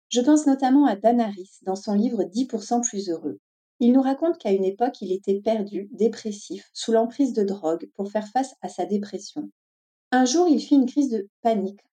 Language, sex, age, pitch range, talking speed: French, female, 40-59, 195-255 Hz, 210 wpm